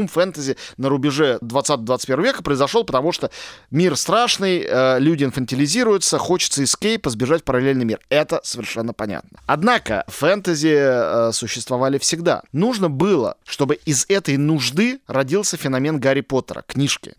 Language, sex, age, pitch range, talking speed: Russian, male, 20-39, 130-175 Hz, 120 wpm